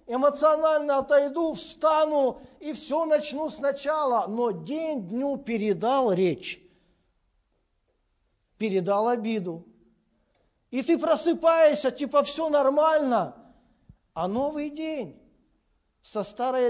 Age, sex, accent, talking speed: 50-69, male, native, 90 wpm